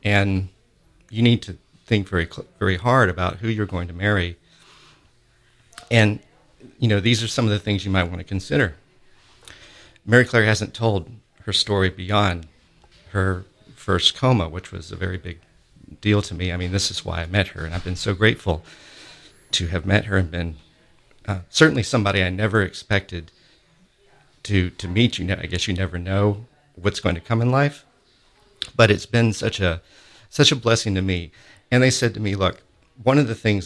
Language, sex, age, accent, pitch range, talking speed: English, male, 50-69, American, 90-115 Hz, 190 wpm